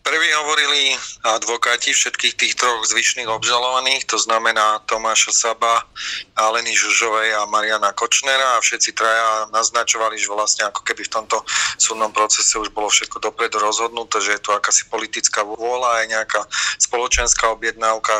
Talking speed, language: 150 wpm, Slovak